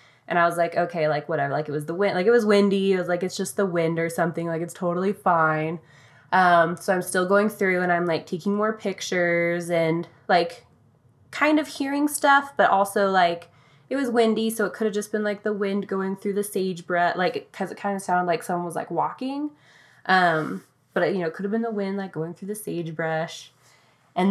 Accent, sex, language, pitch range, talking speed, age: American, female, English, 165-210 Hz, 230 wpm, 20-39